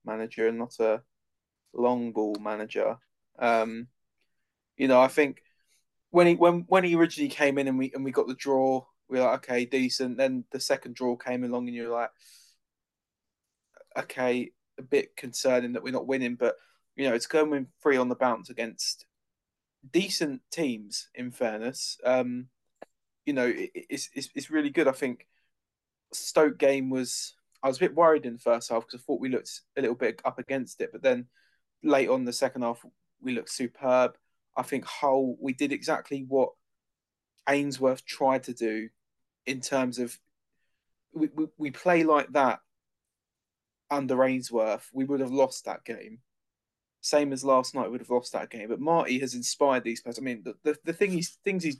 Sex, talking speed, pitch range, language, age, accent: male, 185 wpm, 120-150 Hz, English, 20-39, British